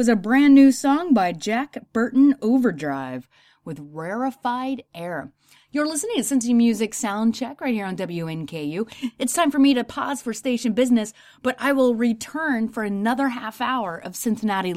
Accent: American